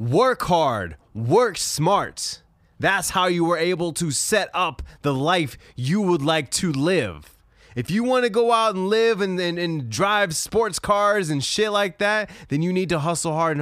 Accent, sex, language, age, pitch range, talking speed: American, male, English, 20-39, 145-190 Hz, 200 wpm